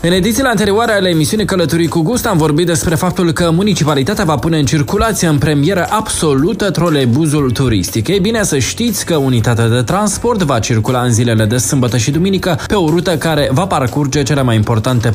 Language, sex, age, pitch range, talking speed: Romanian, male, 20-39, 120-165 Hz, 190 wpm